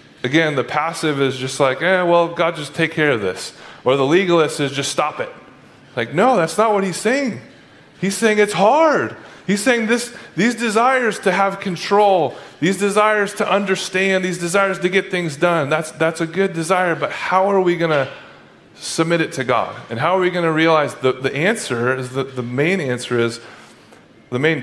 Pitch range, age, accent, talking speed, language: 135-185 Hz, 30-49, American, 200 wpm, English